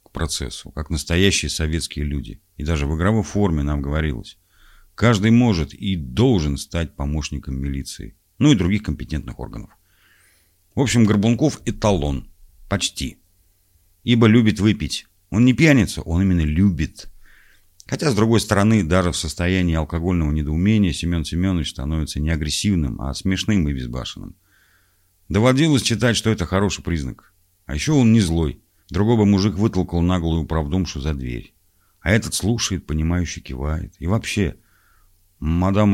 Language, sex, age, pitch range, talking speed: Russian, male, 50-69, 80-105 Hz, 140 wpm